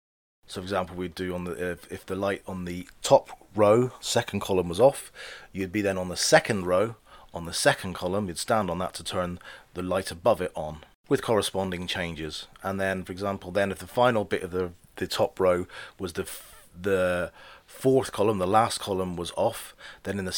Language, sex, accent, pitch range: English, male, British, 90-100 Hz